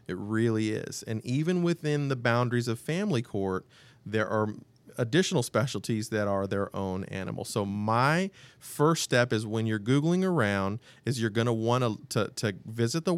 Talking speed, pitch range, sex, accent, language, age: 175 wpm, 110-140 Hz, male, American, English, 40-59